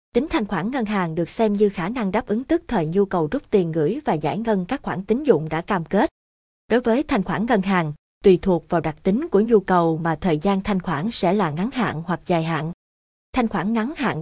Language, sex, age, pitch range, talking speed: Vietnamese, female, 20-39, 175-225 Hz, 250 wpm